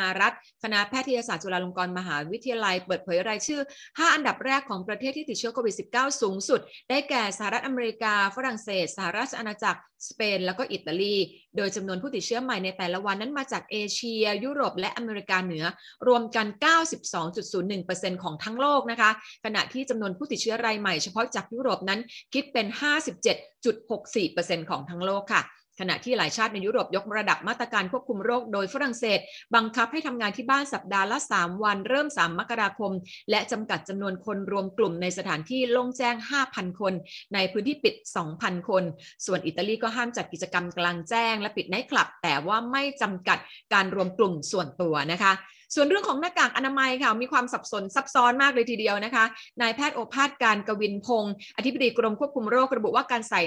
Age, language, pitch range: 30-49, Thai, 195-250 Hz